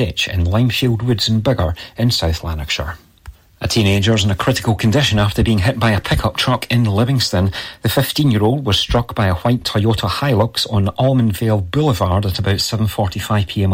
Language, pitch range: English, 95-120 Hz